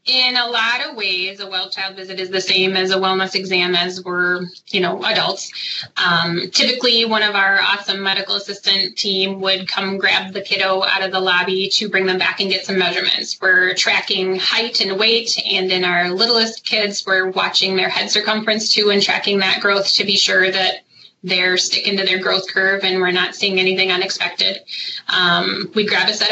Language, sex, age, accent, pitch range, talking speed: English, female, 20-39, American, 190-215 Hz, 200 wpm